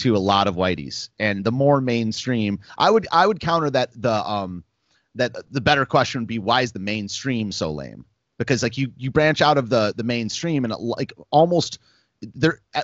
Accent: American